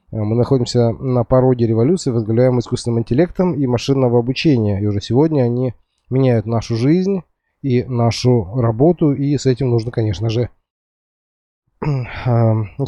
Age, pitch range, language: 20-39, 115-135 Hz, Russian